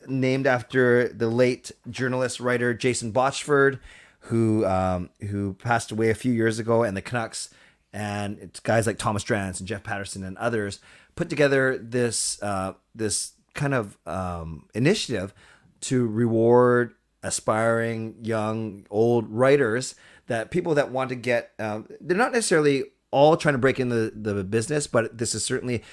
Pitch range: 110-135 Hz